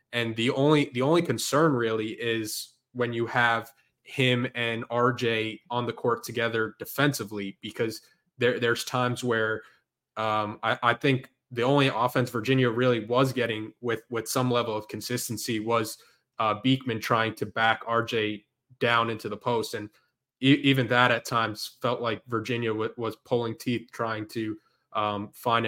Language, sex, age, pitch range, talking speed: English, male, 20-39, 115-125 Hz, 160 wpm